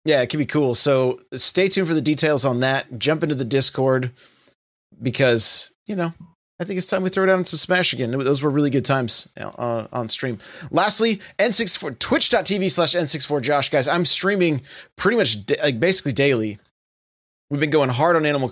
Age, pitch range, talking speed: 30-49, 130-165 Hz, 180 wpm